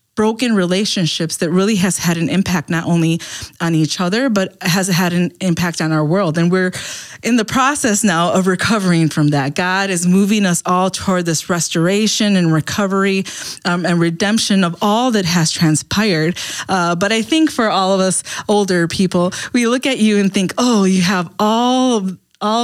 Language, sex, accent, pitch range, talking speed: English, female, American, 170-210 Hz, 190 wpm